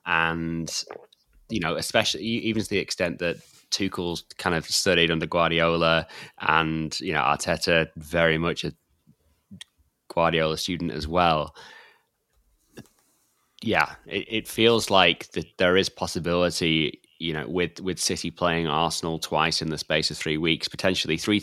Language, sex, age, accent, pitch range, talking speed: English, male, 20-39, British, 80-95 Hz, 145 wpm